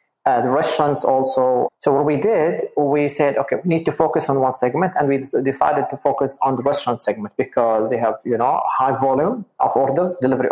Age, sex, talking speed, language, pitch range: 30-49, male, 210 wpm, English, 130-160 Hz